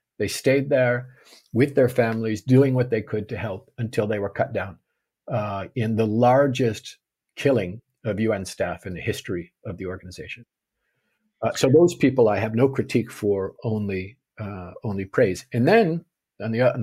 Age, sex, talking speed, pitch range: 50-69, male, 175 wpm, 95-120 Hz